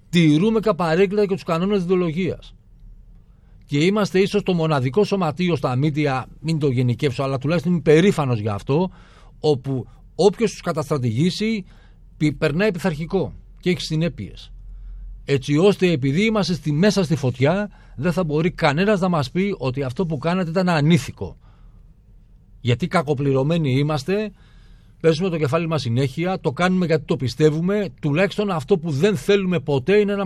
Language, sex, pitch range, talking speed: Greek, male, 130-180 Hz, 145 wpm